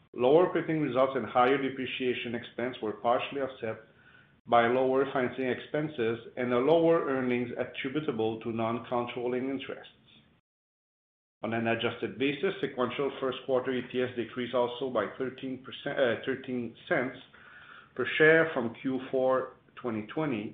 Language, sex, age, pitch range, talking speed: English, male, 50-69, 120-140 Hz, 125 wpm